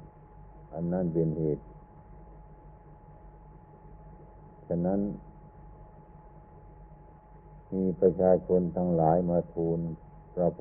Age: 60-79